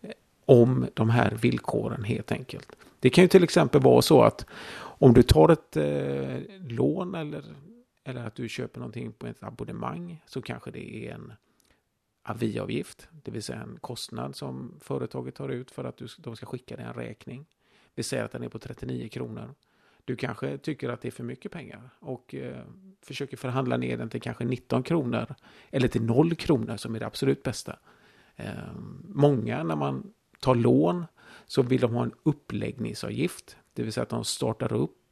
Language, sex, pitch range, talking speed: Swedish, male, 100-135 Hz, 185 wpm